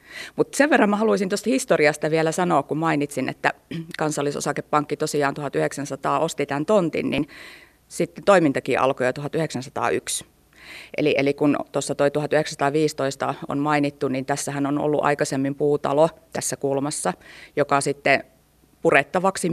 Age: 30-49